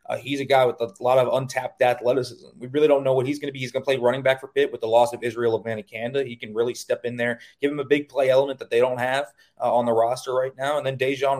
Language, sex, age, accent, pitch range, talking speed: English, male, 20-39, American, 120-140 Hz, 310 wpm